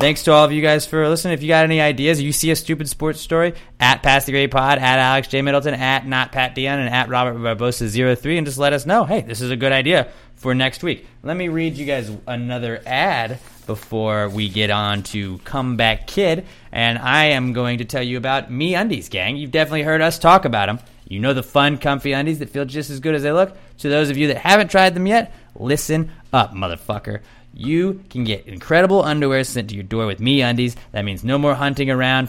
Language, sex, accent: English, male, American